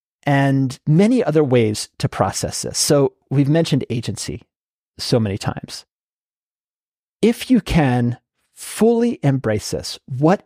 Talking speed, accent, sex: 120 wpm, American, male